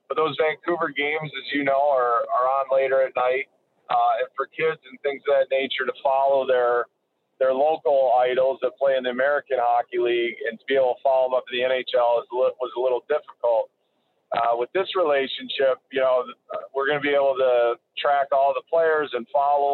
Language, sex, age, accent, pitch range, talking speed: English, male, 40-59, American, 125-145 Hz, 210 wpm